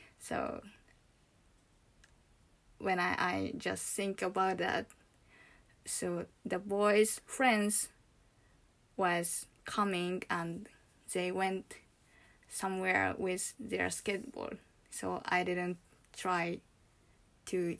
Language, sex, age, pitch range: Japanese, female, 20-39, 180-225 Hz